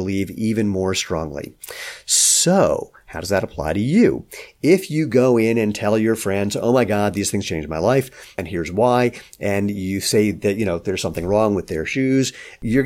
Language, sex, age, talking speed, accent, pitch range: English, male, 50-69, 200 wpm, American, 95-125 Hz